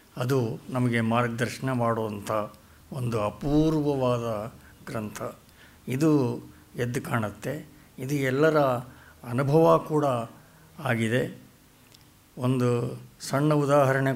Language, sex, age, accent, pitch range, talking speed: Kannada, male, 60-79, native, 120-155 Hz, 75 wpm